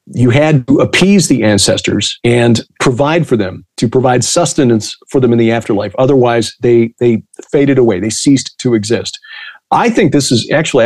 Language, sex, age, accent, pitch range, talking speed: English, male, 40-59, American, 115-140 Hz, 175 wpm